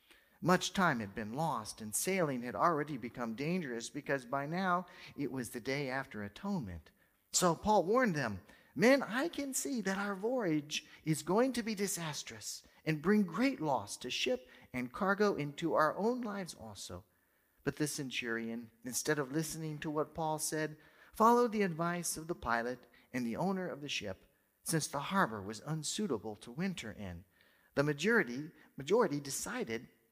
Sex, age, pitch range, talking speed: male, 40-59, 120-185 Hz, 165 wpm